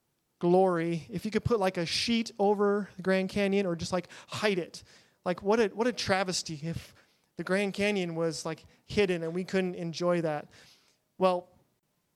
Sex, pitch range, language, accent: male, 170-200 Hz, English, American